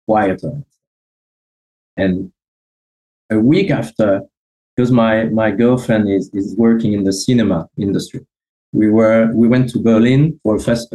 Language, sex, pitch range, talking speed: English, male, 95-120 Hz, 135 wpm